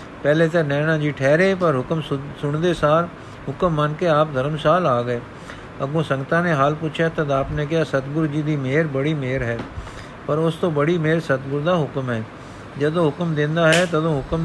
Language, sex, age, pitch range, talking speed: Punjabi, male, 50-69, 135-165 Hz, 200 wpm